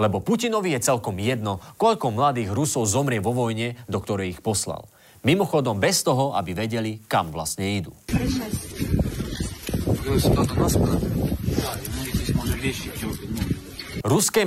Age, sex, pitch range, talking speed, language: 40-59, male, 110-165 Hz, 100 wpm, Slovak